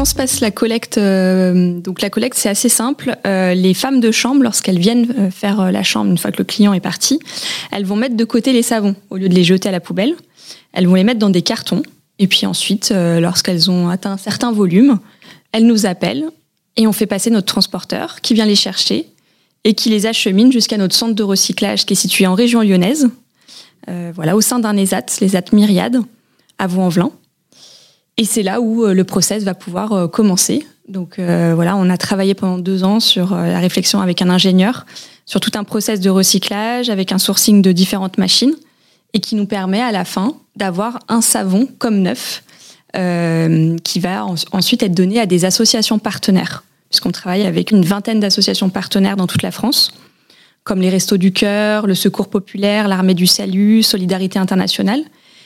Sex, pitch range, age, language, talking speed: female, 185-225 Hz, 20-39, French, 195 wpm